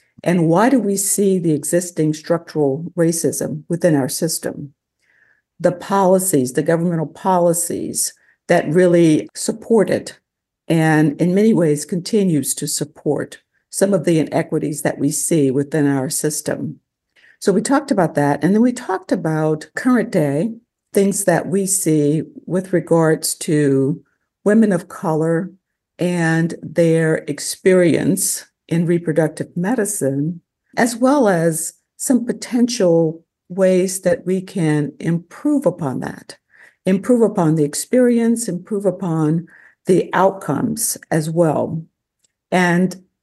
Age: 60-79